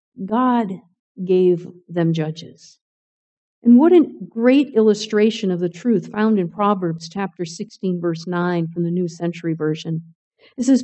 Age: 50-69